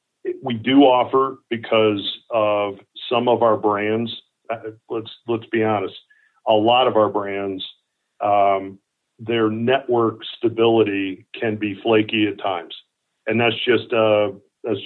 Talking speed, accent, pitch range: 130 wpm, American, 100-115 Hz